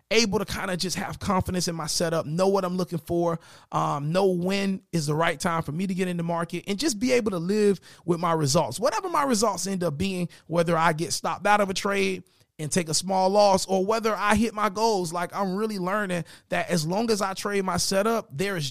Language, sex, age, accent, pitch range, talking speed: English, male, 30-49, American, 165-205 Hz, 245 wpm